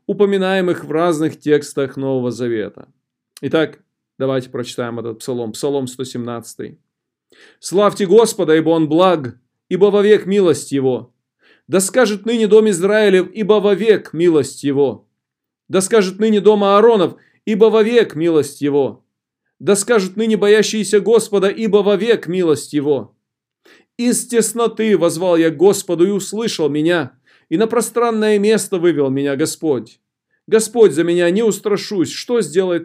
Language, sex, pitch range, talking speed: Russian, male, 155-215 Hz, 130 wpm